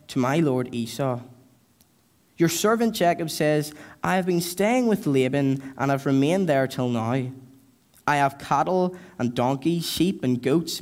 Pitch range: 130-170 Hz